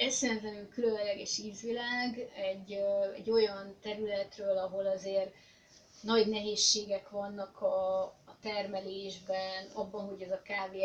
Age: 20-39